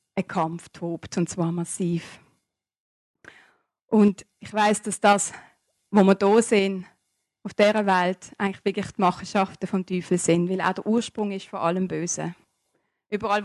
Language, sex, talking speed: German, female, 145 wpm